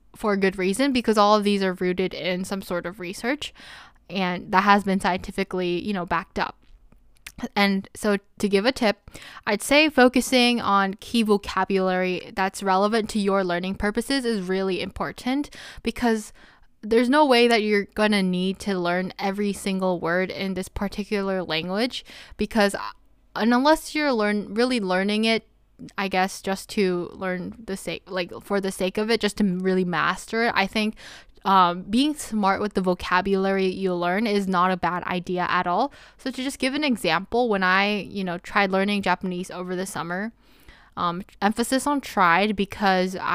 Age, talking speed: 10-29, 175 wpm